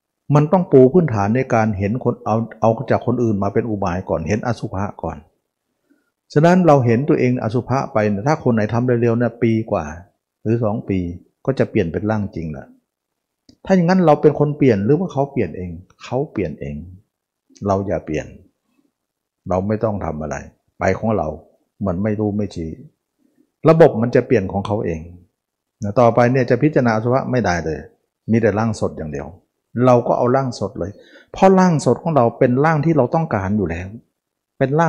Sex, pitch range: male, 100-130 Hz